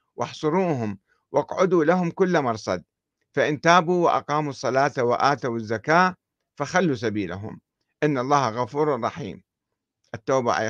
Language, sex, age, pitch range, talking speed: Arabic, male, 50-69, 120-165 Hz, 105 wpm